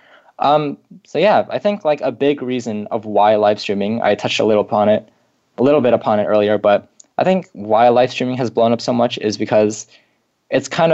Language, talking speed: English, 220 wpm